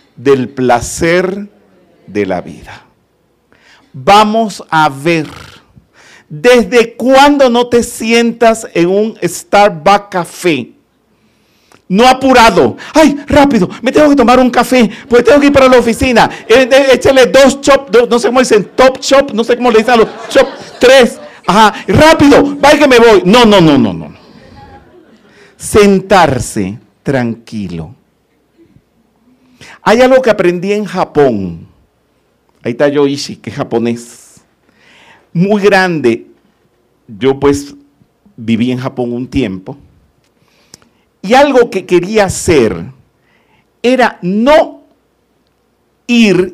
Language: Spanish